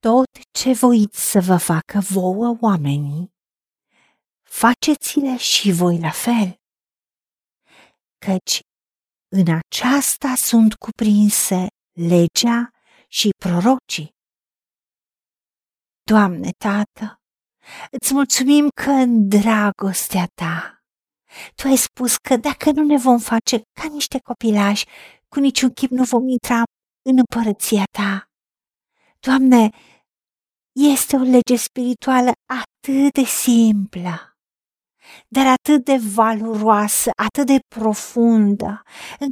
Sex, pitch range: female, 210-275 Hz